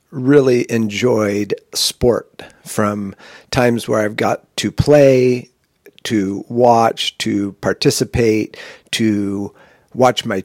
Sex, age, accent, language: male, 50-69, American, English